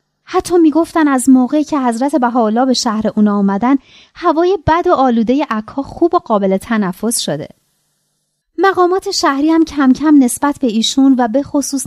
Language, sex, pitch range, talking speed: Persian, female, 215-305 Hz, 160 wpm